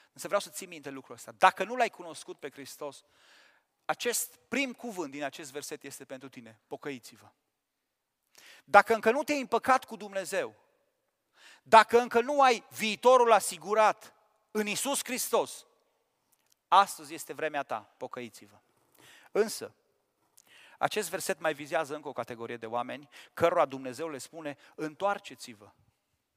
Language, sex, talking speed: Romanian, male, 135 wpm